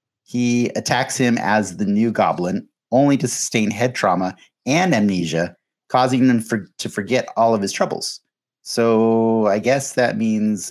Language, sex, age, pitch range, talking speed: English, male, 30-49, 105-135 Hz, 150 wpm